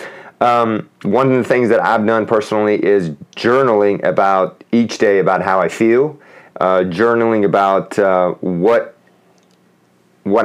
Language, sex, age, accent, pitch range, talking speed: English, male, 30-49, American, 95-115 Hz, 130 wpm